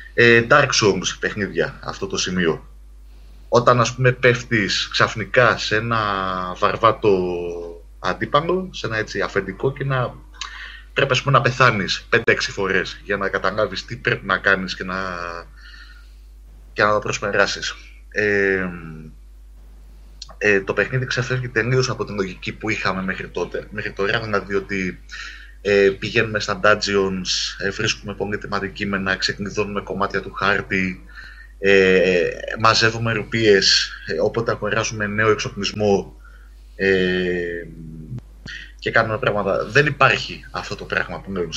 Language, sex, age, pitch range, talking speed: Greek, male, 20-39, 95-115 Hz, 125 wpm